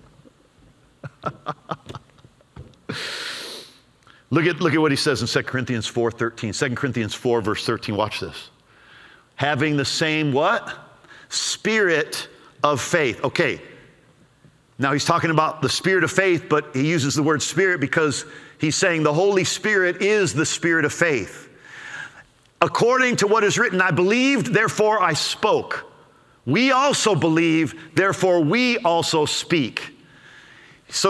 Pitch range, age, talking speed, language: 135-185 Hz, 50-69, 130 wpm, English